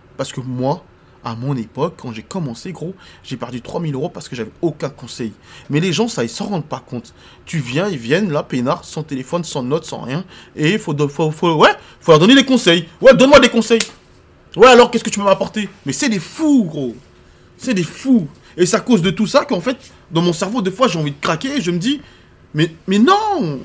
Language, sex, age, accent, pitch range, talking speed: French, male, 20-39, French, 135-190 Hz, 240 wpm